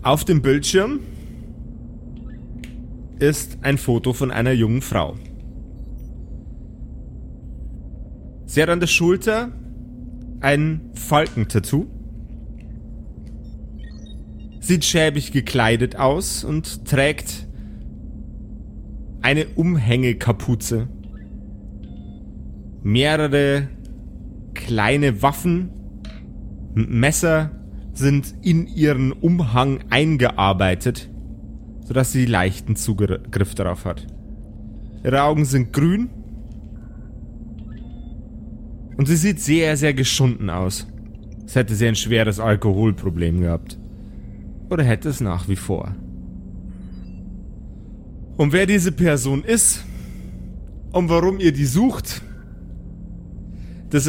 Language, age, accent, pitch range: German, 30-49, German, 95-150 Hz